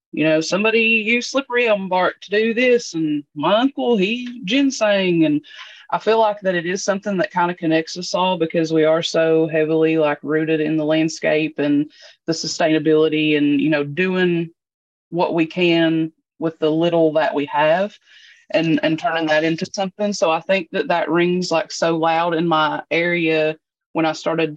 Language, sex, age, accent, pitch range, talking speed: English, female, 20-39, American, 155-185 Hz, 185 wpm